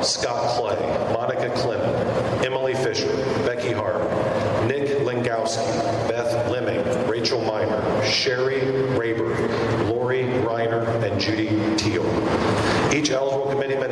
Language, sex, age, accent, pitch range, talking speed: English, male, 40-59, American, 110-135 Hz, 105 wpm